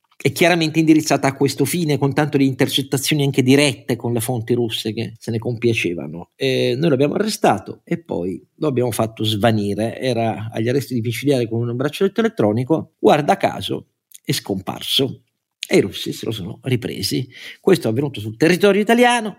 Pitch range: 110-150 Hz